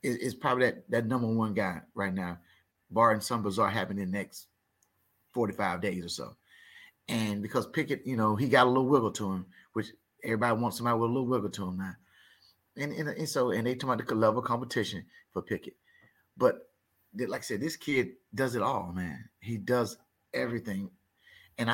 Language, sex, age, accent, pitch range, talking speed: English, male, 30-49, American, 105-125 Hz, 195 wpm